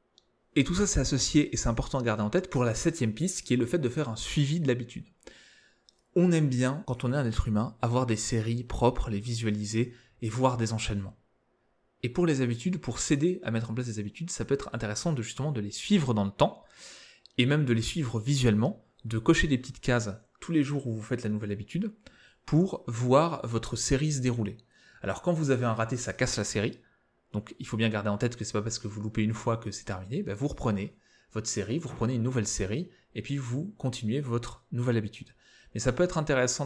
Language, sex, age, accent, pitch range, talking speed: French, male, 20-39, French, 110-135 Hz, 240 wpm